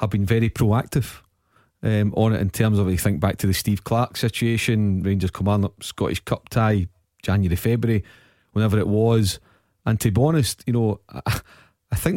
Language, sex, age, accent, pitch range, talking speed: English, male, 40-59, British, 105-120 Hz, 185 wpm